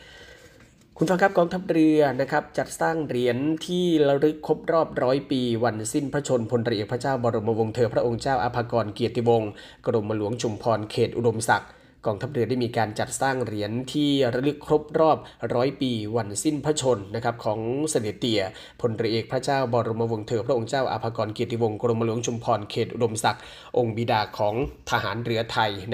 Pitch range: 115-135 Hz